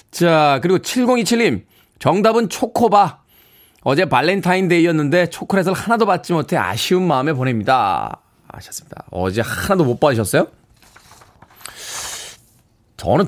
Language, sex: Korean, male